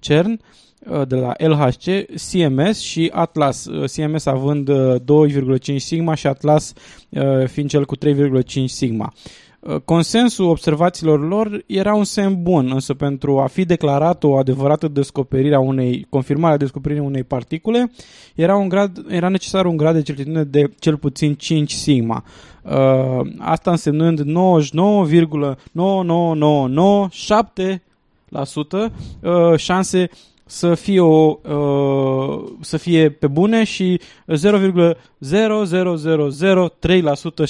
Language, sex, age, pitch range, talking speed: English, male, 20-39, 135-175 Hz, 110 wpm